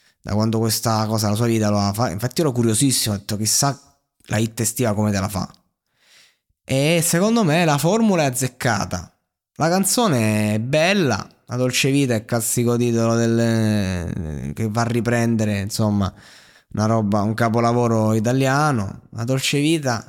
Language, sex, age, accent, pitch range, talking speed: Italian, male, 20-39, native, 100-120 Hz, 165 wpm